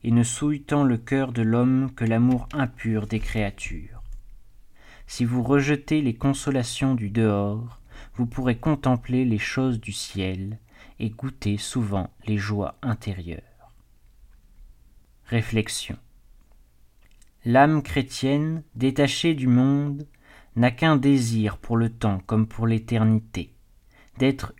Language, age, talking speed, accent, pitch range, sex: French, 40-59, 120 wpm, French, 110-135 Hz, male